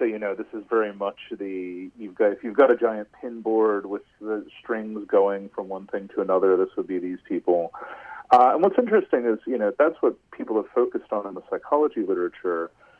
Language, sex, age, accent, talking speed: English, male, 40-59, American, 220 wpm